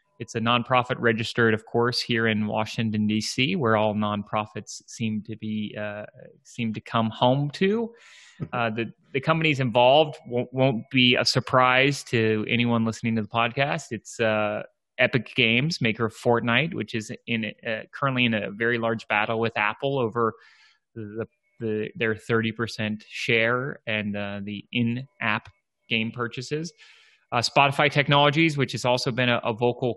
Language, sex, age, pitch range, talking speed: English, male, 30-49, 110-135 Hz, 165 wpm